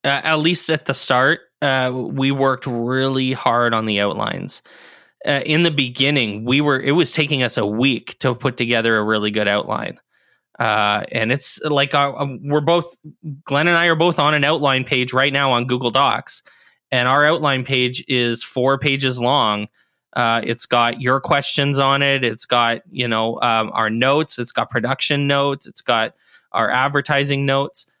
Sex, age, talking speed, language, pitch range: male, 20-39, 180 wpm, English, 115-140 Hz